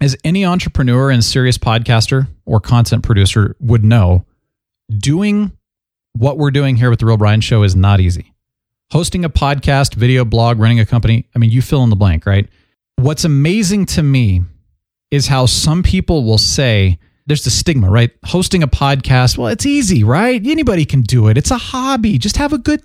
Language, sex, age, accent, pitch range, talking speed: English, male, 40-59, American, 110-165 Hz, 190 wpm